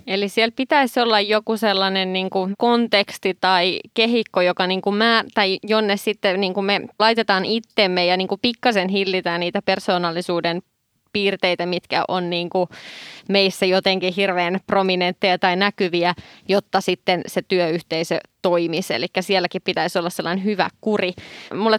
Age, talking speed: 20-39, 130 wpm